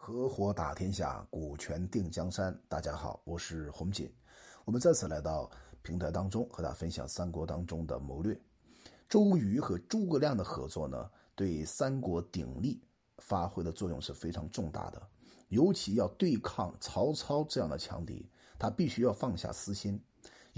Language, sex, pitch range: Chinese, male, 85-140 Hz